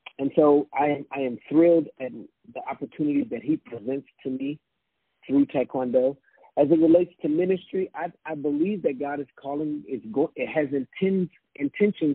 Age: 40-59